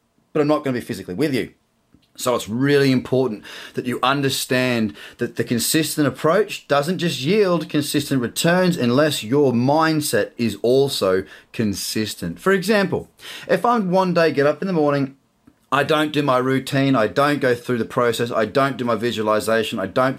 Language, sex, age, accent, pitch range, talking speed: English, male, 30-49, Australian, 115-160 Hz, 180 wpm